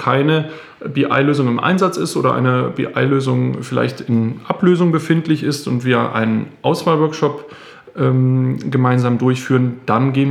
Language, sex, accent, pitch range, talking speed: German, male, German, 125-150 Hz, 120 wpm